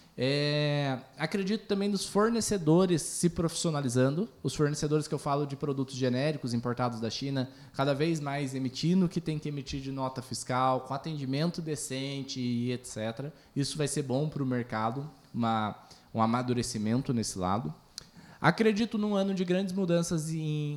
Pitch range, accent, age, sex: 120-155 Hz, Brazilian, 20-39, male